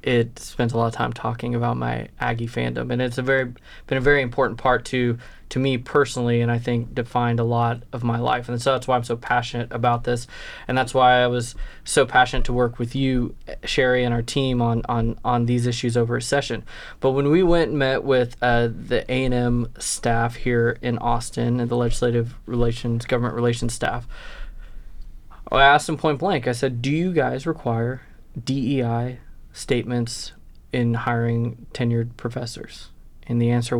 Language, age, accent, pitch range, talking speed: English, 20-39, American, 120-130 Hz, 190 wpm